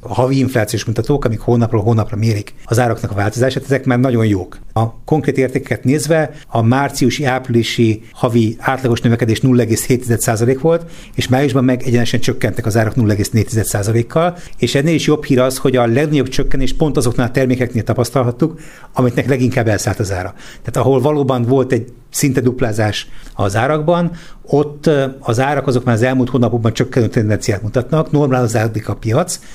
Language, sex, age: Hungarian, male, 60-79